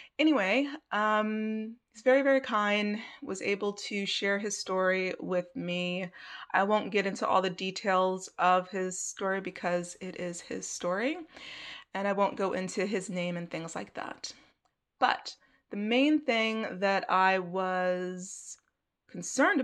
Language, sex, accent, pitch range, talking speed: English, female, American, 185-230 Hz, 145 wpm